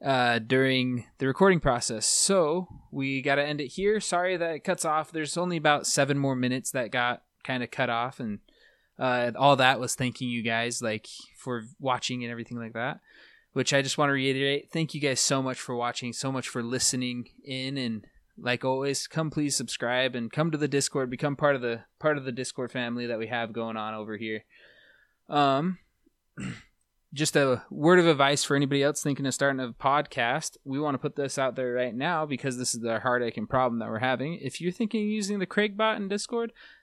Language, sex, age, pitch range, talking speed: English, male, 20-39, 120-150 Hz, 215 wpm